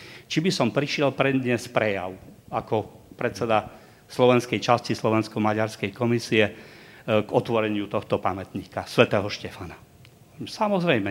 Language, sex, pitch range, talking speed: Slovak, male, 110-150 Hz, 105 wpm